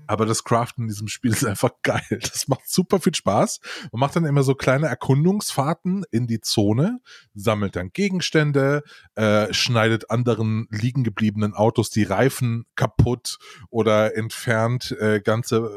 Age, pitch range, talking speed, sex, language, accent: 20-39, 110-140 Hz, 150 wpm, male, German, German